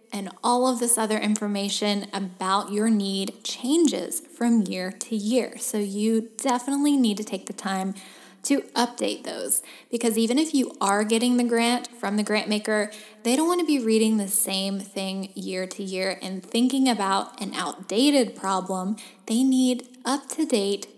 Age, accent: 10-29, American